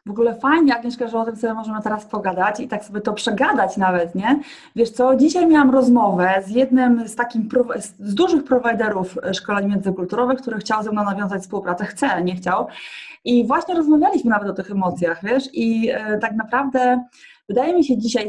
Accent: native